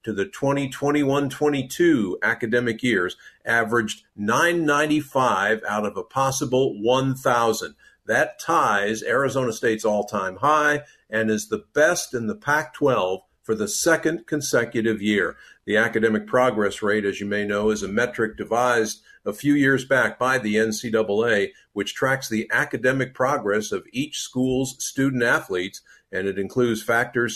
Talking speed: 135 wpm